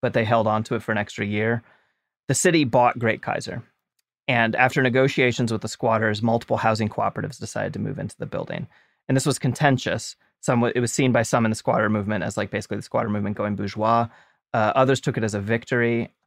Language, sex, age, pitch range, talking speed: English, male, 30-49, 110-125 Hz, 220 wpm